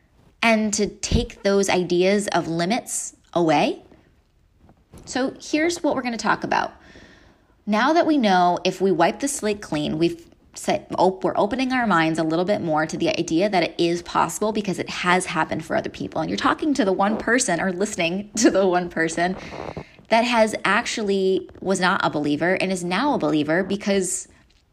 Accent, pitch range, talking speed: American, 170-225 Hz, 190 wpm